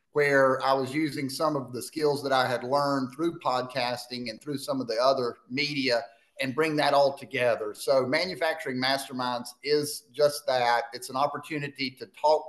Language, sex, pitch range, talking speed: English, male, 125-150 Hz, 180 wpm